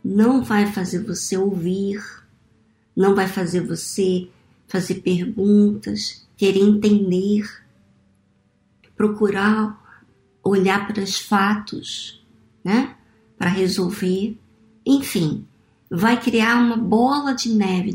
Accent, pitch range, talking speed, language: Brazilian, 175-220 Hz, 95 wpm, Portuguese